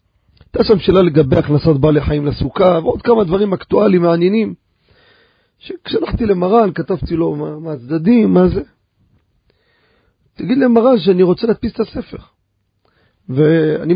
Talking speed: 130 wpm